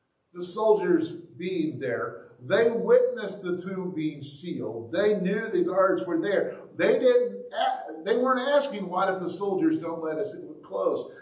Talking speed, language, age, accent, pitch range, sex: 155 wpm, English, 50-69, American, 145-230 Hz, male